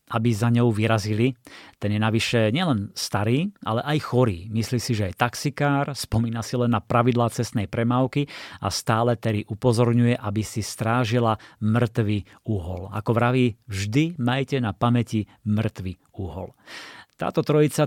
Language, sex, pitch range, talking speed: Slovak, male, 110-125 Hz, 145 wpm